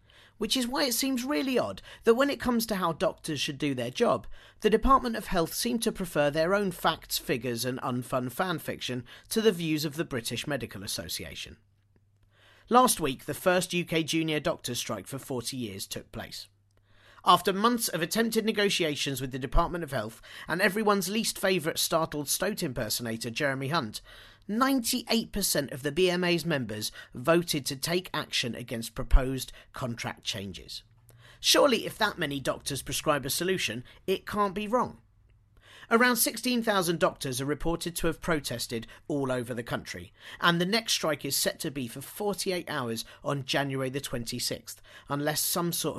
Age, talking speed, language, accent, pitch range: 40-59, 165 wpm, English, British, 120-185 Hz